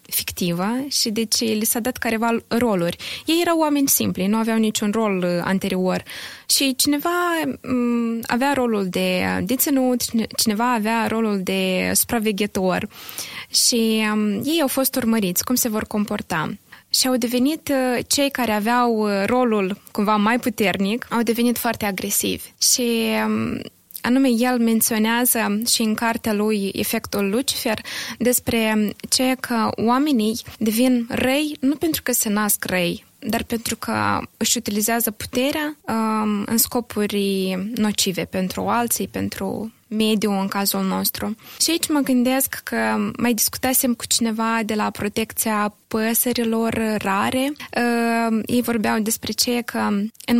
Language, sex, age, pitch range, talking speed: Romanian, female, 20-39, 210-250 Hz, 135 wpm